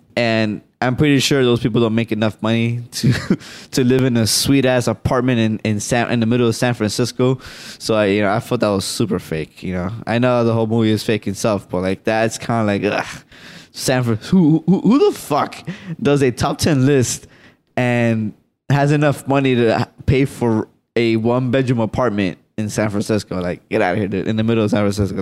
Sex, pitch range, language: male, 110-135 Hz, English